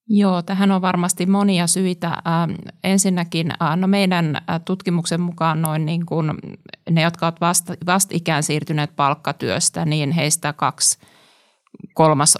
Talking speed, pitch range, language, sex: 130 wpm, 150-175 Hz, Finnish, male